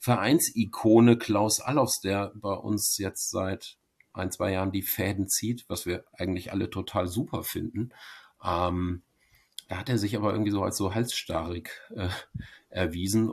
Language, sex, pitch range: German, male, 95-110 Hz